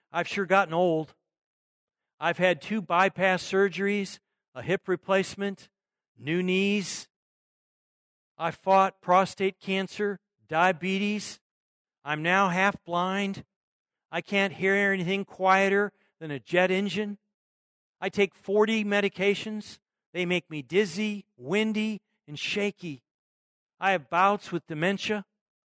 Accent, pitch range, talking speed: American, 155-205 Hz, 110 wpm